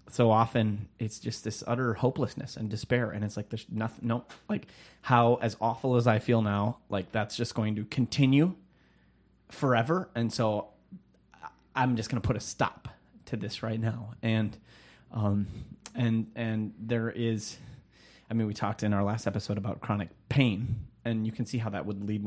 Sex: male